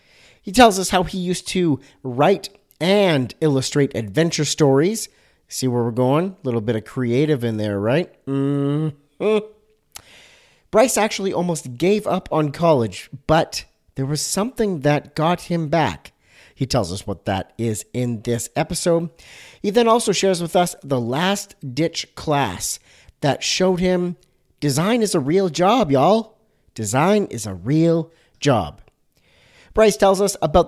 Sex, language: male, English